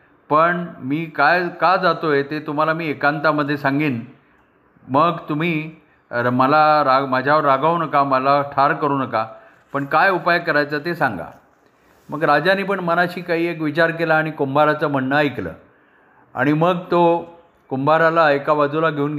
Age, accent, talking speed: 50-69, native, 145 wpm